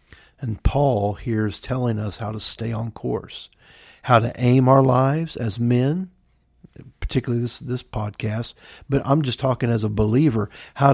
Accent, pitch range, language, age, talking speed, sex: American, 110-130 Hz, English, 50-69, 165 wpm, male